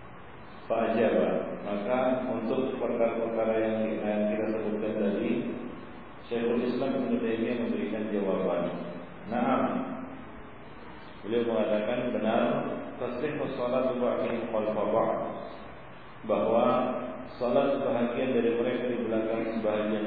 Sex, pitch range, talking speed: male, 110-120 Hz, 90 wpm